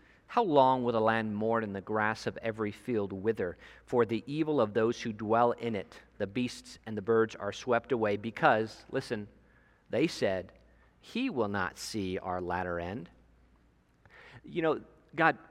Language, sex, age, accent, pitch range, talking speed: English, male, 40-59, American, 110-155 Hz, 170 wpm